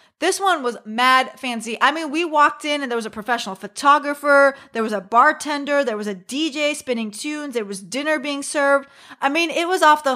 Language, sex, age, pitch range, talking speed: English, female, 30-49, 250-315 Hz, 220 wpm